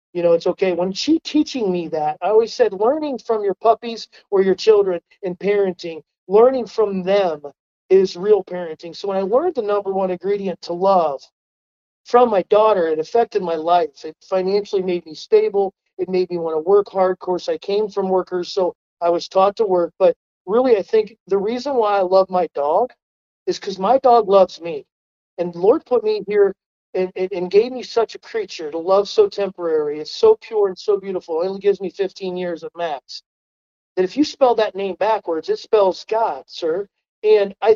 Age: 40-59